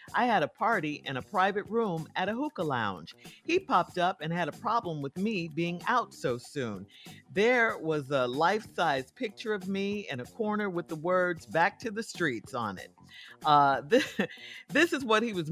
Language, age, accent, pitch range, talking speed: English, 50-69, American, 145-205 Hz, 195 wpm